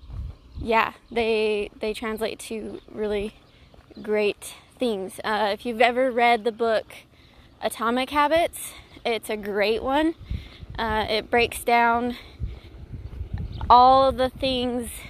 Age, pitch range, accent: 20-39, 225-265 Hz, American